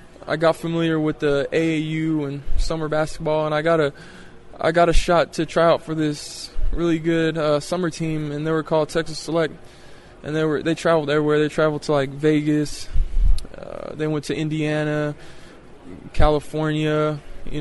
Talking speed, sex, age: 175 wpm, male, 20-39